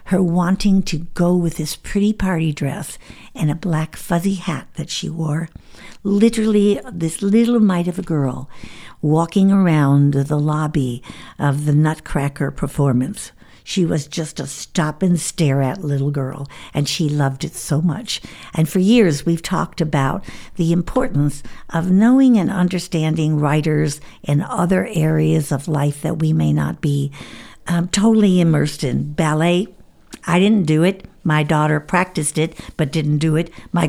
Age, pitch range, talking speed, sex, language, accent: 60-79, 145-180 Hz, 150 wpm, female, English, American